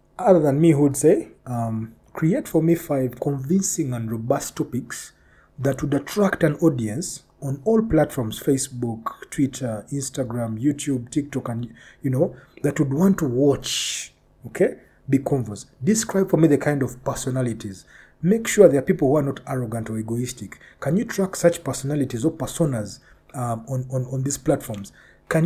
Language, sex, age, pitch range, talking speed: English, male, 40-59, 125-170 Hz, 165 wpm